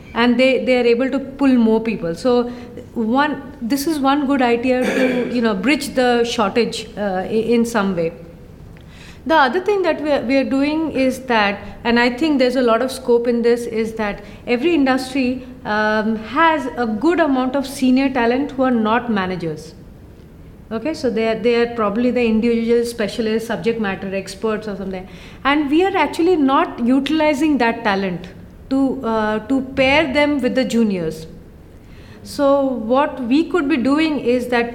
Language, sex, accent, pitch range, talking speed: English, female, Indian, 230-270 Hz, 180 wpm